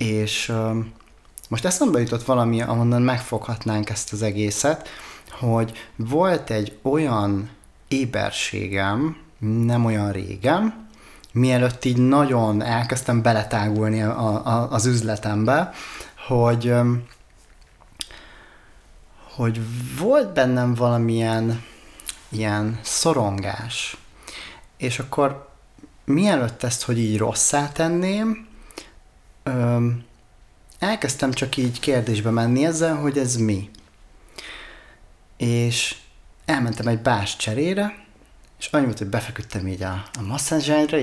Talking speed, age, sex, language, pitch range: 95 wpm, 30-49, male, Hungarian, 110-140 Hz